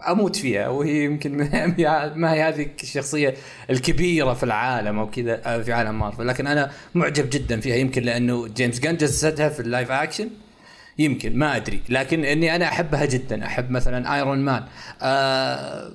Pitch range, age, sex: 130-170 Hz, 20-39, male